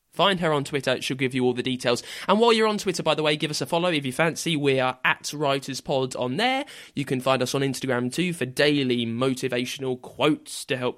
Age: 20-39